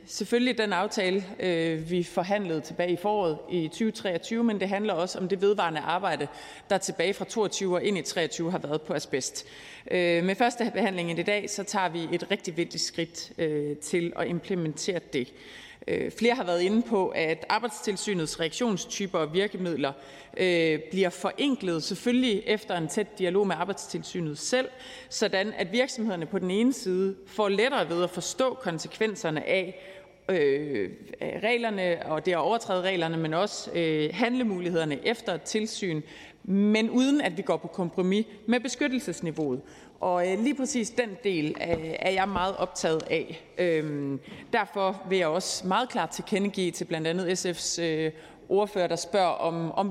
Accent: native